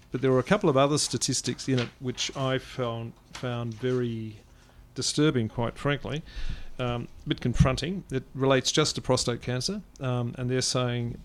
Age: 40-59